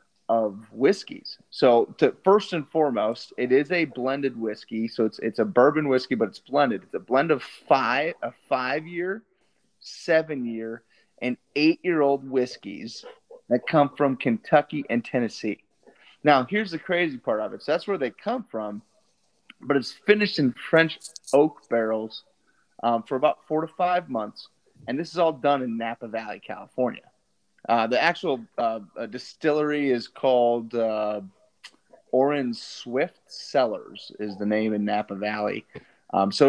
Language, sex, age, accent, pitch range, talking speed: English, male, 30-49, American, 115-155 Hz, 155 wpm